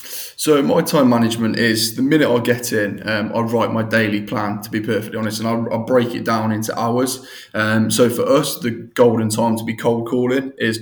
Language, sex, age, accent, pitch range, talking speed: English, male, 20-39, British, 110-120 Hz, 220 wpm